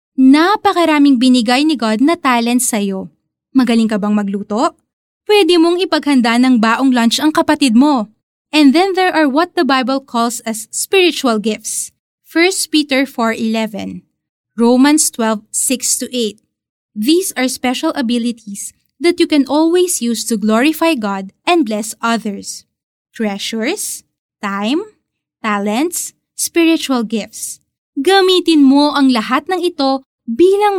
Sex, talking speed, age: female, 125 wpm, 20-39